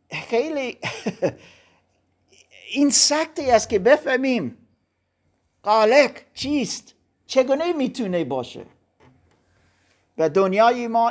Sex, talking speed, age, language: male, 80 wpm, 50-69, Persian